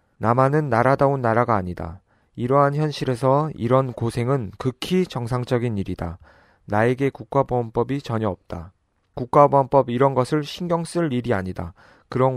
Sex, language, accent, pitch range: male, Korean, native, 115-140 Hz